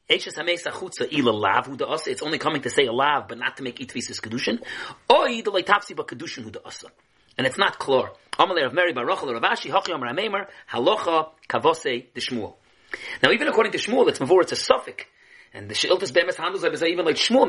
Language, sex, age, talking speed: English, male, 30-49, 150 wpm